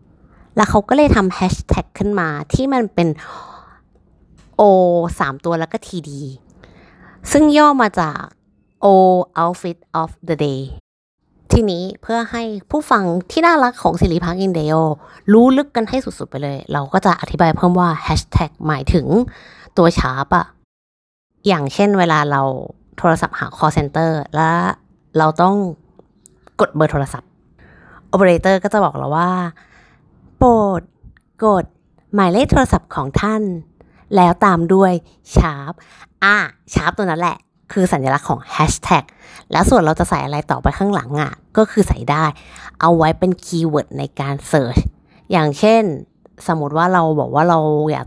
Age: 20-39